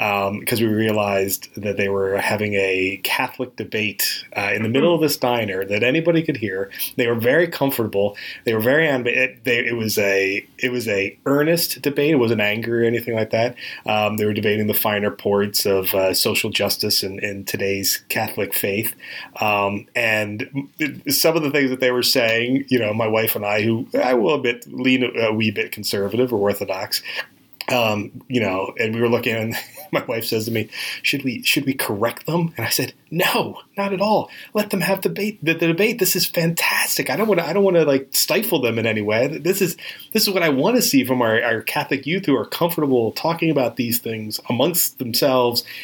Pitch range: 105-140 Hz